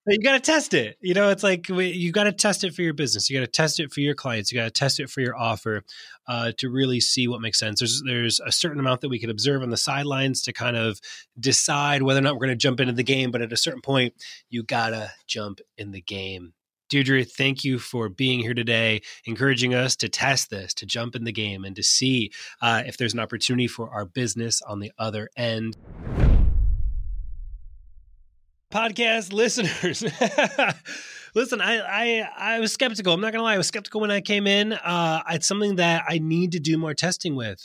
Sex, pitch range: male, 120-175 Hz